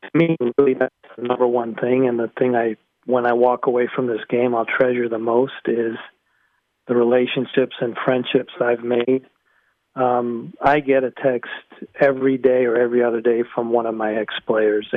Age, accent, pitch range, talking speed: 40-59, American, 120-135 Hz, 185 wpm